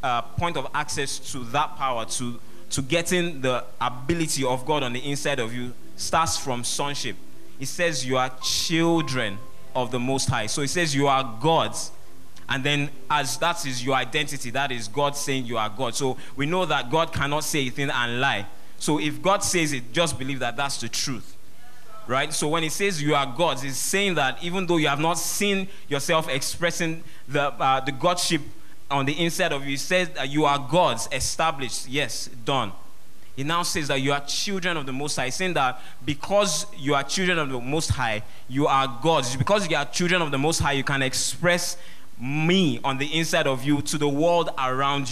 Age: 20-39